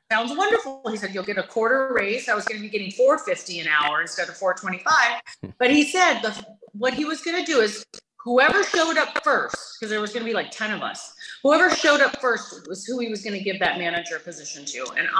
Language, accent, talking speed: English, American, 255 wpm